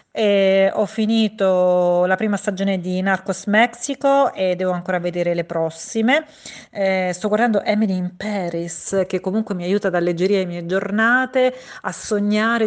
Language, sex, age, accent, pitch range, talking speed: Italian, female, 40-59, native, 175-200 Hz, 150 wpm